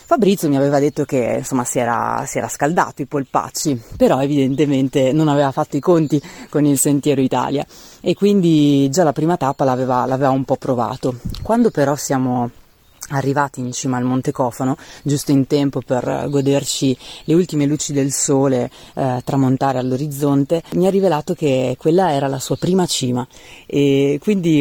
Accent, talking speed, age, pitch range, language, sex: native, 170 wpm, 30-49, 130-155 Hz, Italian, female